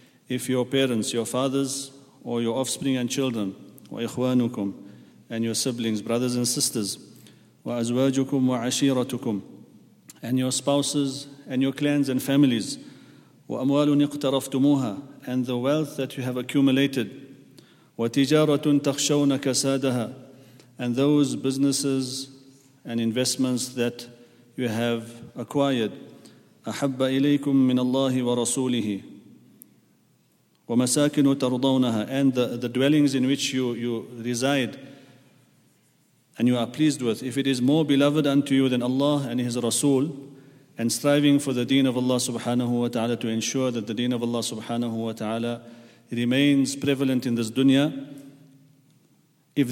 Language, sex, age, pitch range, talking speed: English, male, 40-59, 120-140 Hz, 120 wpm